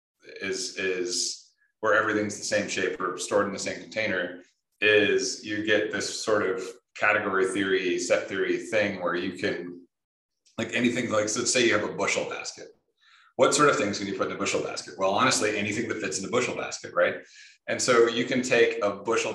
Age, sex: 30-49, male